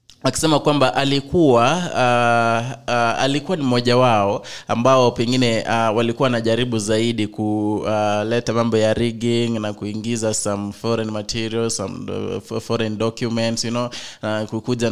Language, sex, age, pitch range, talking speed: English, male, 20-39, 110-125 Hz, 135 wpm